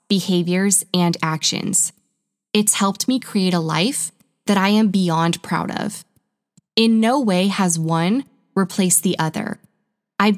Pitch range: 175-210 Hz